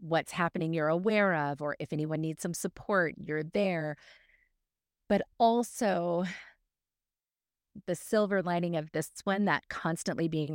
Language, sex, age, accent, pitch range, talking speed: English, female, 30-49, American, 150-190 Hz, 135 wpm